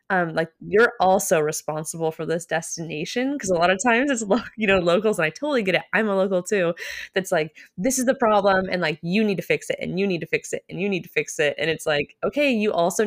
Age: 20-39